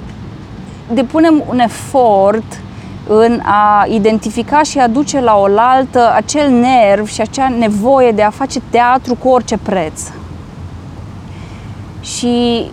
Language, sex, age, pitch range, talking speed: Romanian, female, 20-39, 195-255 Hz, 115 wpm